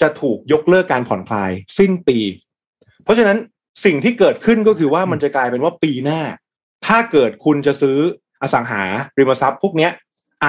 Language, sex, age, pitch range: Thai, male, 20-39, 120-165 Hz